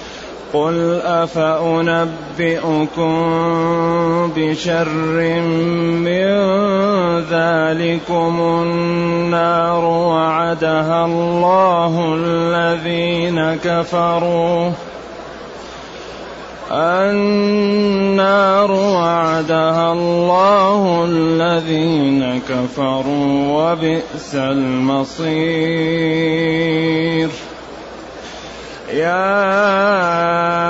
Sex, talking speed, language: male, 35 wpm, Arabic